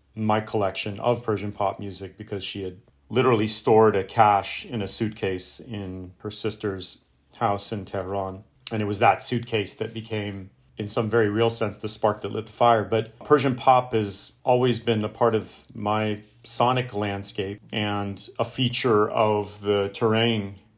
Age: 40-59